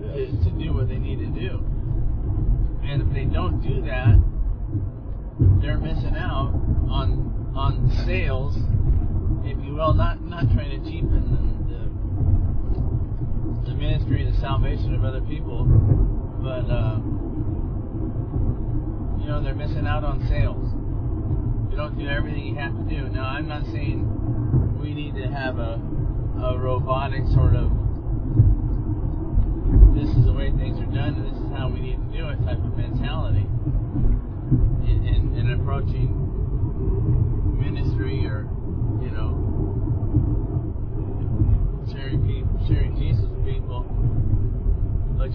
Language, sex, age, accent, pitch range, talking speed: English, male, 40-59, American, 105-115 Hz, 135 wpm